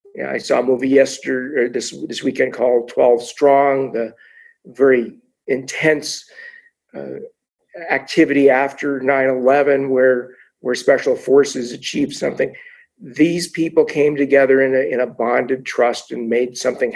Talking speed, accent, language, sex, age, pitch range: 135 wpm, American, English, male, 50-69, 130-185 Hz